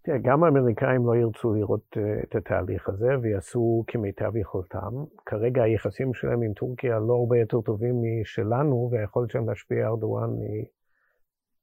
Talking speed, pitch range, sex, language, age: 140 wpm, 110-140 Hz, male, Hebrew, 50-69